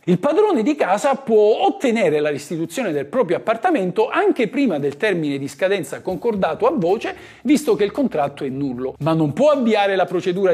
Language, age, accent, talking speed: Italian, 50-69, native, 180 wpm